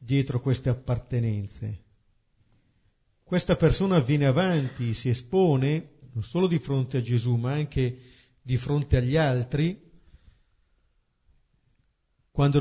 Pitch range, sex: 120-145 Hz, male